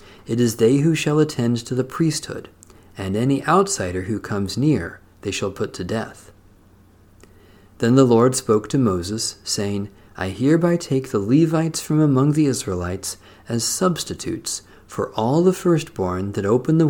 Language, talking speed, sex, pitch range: English, 160 wpm, male, 100-135 Hz